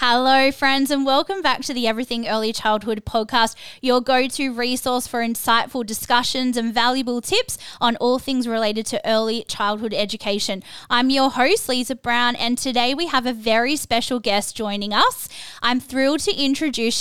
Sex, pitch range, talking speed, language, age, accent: female, 225-265 Hz, 165 wpm, English, 10-29, Australian